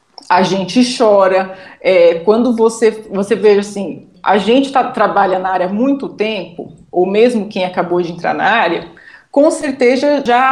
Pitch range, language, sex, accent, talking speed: 200-265 Hz, Portuguese, female, Brazilian, 165 wpm